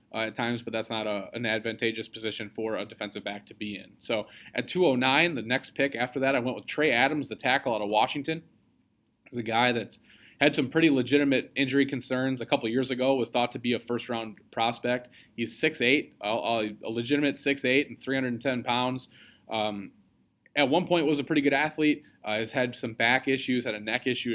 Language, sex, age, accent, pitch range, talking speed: English, male, 20-39, American, 115-135 Hz, 210 wpm